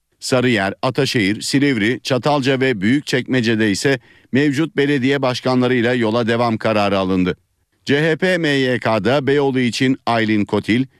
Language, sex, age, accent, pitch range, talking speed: Turkish, male, 50-69, native, 105-135 Hz, 110 wpm